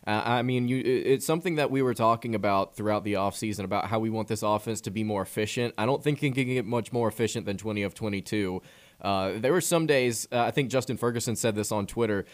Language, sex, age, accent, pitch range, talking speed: English, male, 20-39, American, 110-130 Hz, 245 wpm